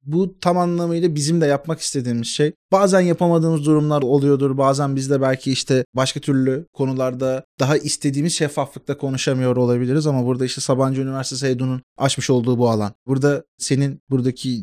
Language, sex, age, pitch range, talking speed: Turkish, male, 30-49, 125-160 Hz, 155 wpm